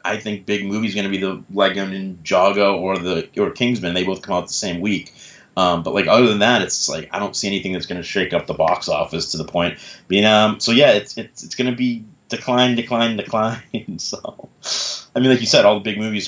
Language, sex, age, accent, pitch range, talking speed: English, male, 30-49, American, 95-110 Hz, 250 wpm